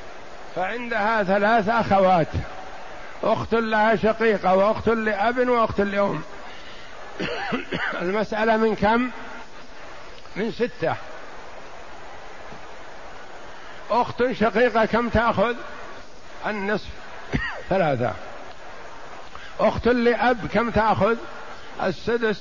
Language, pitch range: Arabic, 190-230 Hz